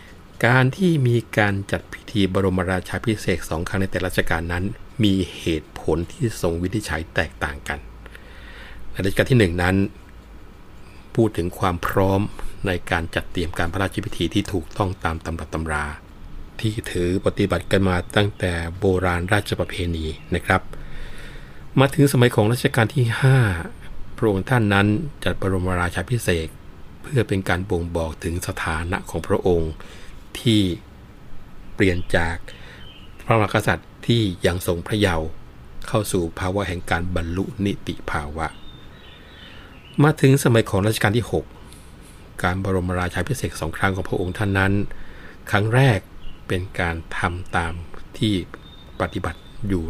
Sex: male